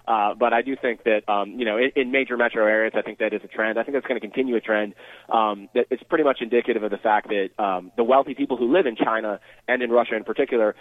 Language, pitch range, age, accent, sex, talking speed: English, 110-135 Hz, 30-49, American, male, 280 wpm